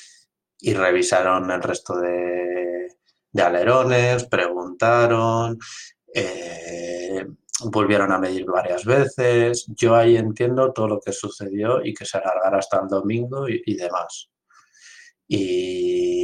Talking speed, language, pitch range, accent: 120 wpm, Spanish, 95-120 Hz, Spanish